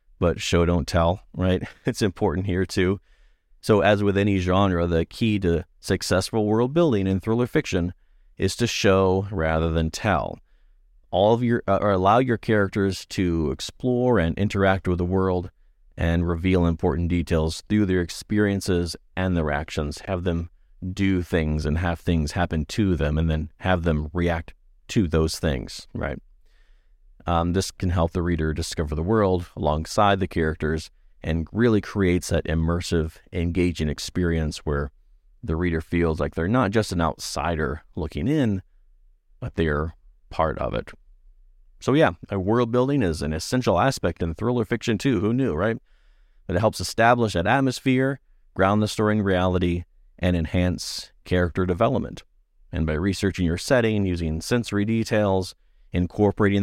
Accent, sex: American, male